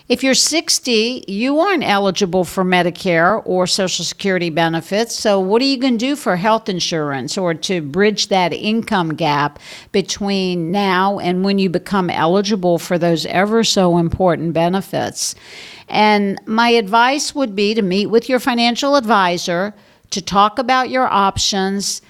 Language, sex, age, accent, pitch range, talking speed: English, female, 50-69, American, 180-235 Hz, 155 wpm